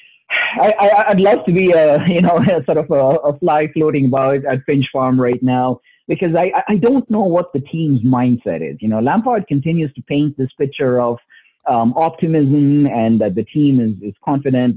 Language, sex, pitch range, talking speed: English, male, 125-165 Hz, 205 wpm